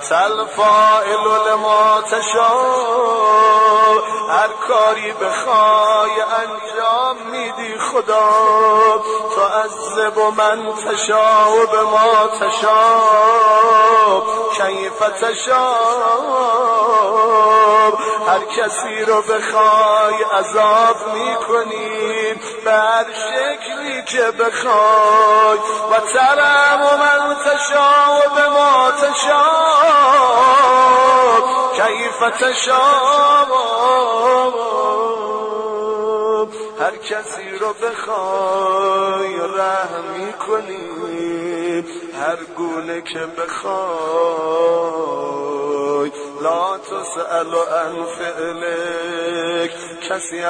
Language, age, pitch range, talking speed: Persian, 30-49, 175-220 Hz, 65 wpm